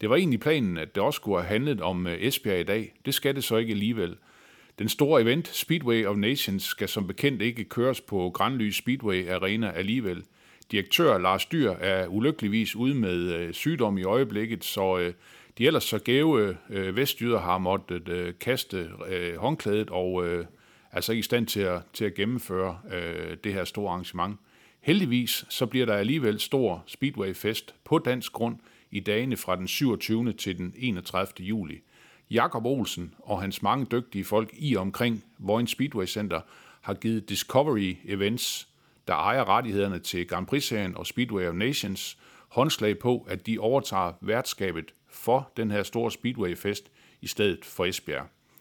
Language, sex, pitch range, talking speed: Danish, male, 95-120 Hz, 160 wpm